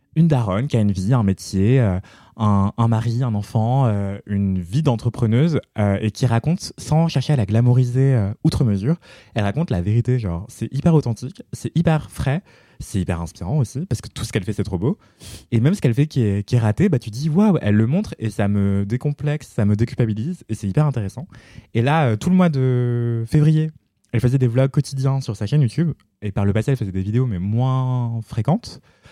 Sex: male